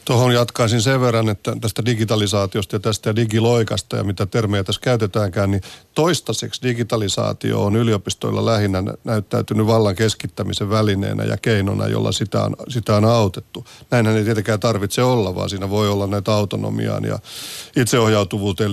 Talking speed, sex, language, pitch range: 145 wpm, male, Finnish, 105-120 Hz